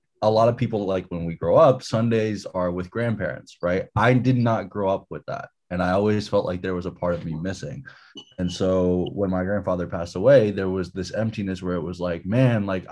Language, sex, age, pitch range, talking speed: English, male, 20-39, 90-110 Hz, 230 wpm